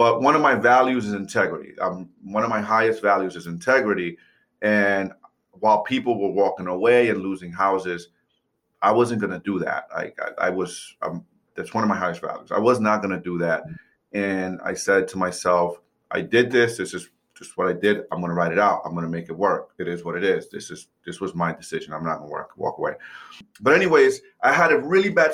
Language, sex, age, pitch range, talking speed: English, male, 30-49, 95-135 Hz, 230 wpm